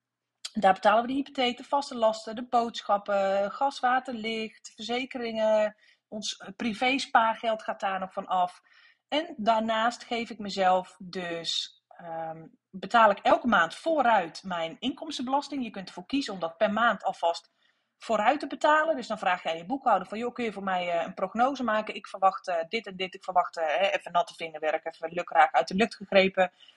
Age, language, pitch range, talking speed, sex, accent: 30-49, Dutch, 190-250 Hz, 185 wpm, female, Dutch